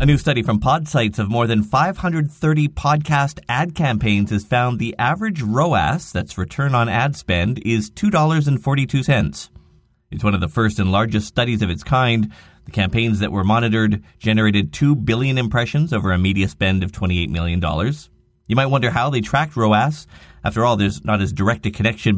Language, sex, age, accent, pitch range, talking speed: English, male, 30-49, American, 95-140 Hz, 180 wpm